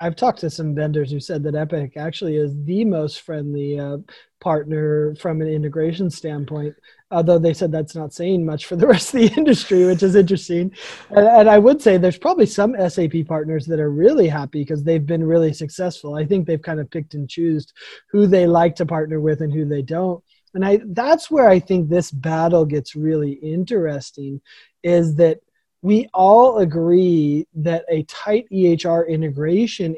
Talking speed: 185 wpm